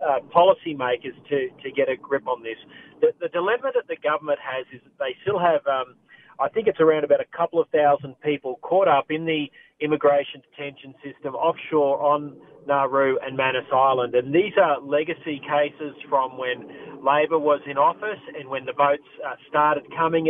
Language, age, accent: English, 40-59, Australian